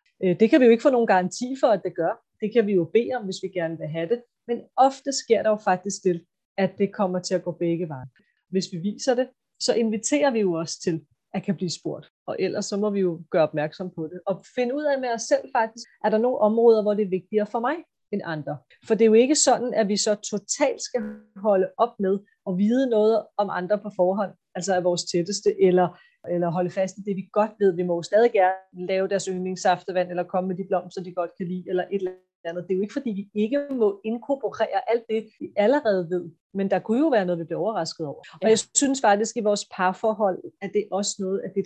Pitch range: 185-220 Hz